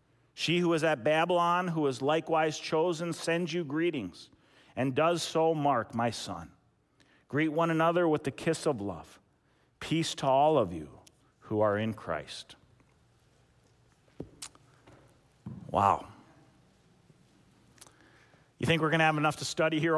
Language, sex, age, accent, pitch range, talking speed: English, male, 50-69, American, 135-160 Hz, 140 wpm